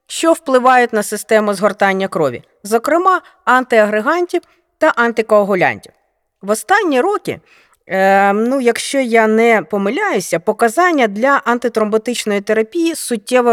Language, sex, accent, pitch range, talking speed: Ukrainian, female, native, 195-260 Hz, 105 wpm